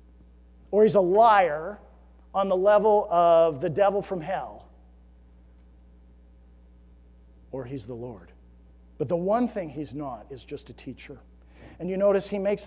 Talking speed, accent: 145 wpm, American